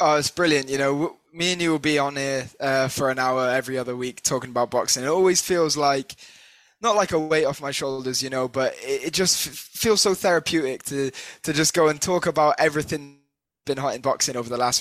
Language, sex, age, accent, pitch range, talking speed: English, male, 10-29, British, 130-155 Hz, 235 wpm